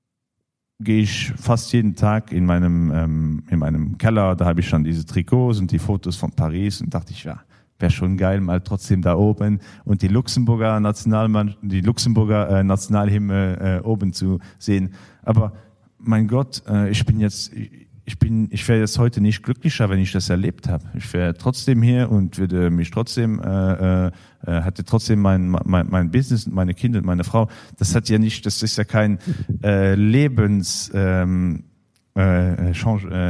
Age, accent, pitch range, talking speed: 40-59, German, 95-125 Hz, 180 wpm